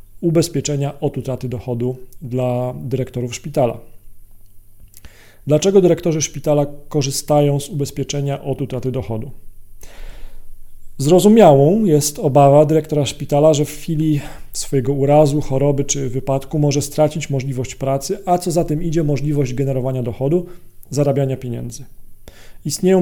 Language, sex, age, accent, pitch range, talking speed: Polish, male, 40-59, native, 130-150 Hz, 115 wpm